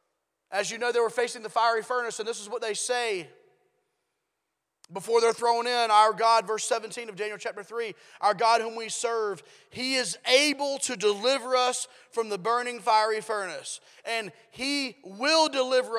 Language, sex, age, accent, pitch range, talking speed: English, male, 30-49, American, 190-255 Hz, 175 wpm